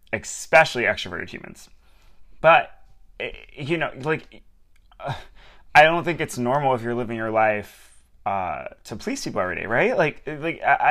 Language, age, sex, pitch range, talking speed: English, 20-39, male, 115-150 Hz, 150 wpm